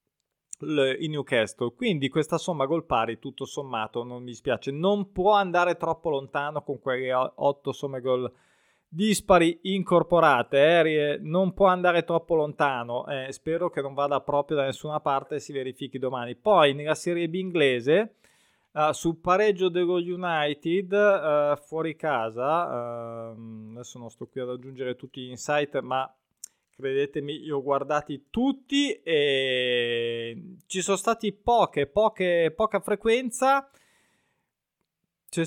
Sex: male